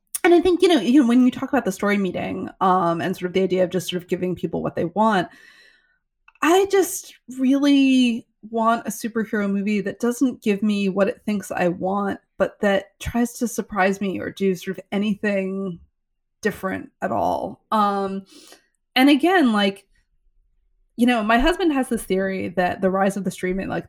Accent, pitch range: American, 180-230 Hz